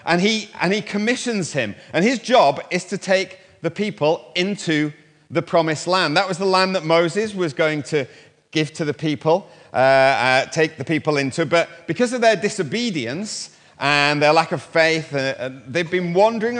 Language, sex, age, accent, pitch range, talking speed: English, male, 30-49, British, 150-190 Hz, 185 wpm